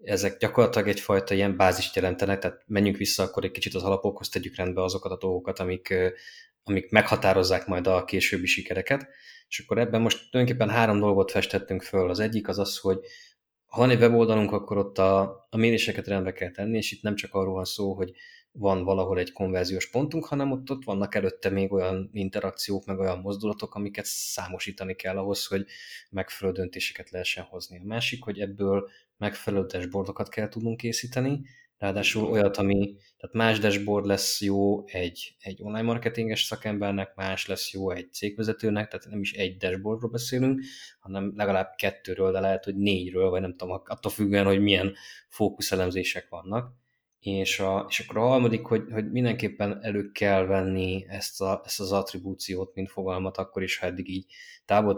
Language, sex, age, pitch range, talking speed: Hungarian, male, 20-39, 95-105 Hz, 175 wpm